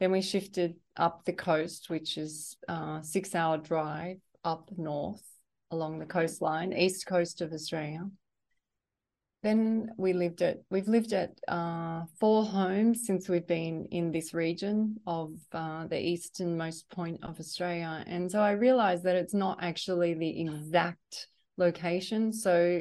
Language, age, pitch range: English, 30-49, 165-190 Hz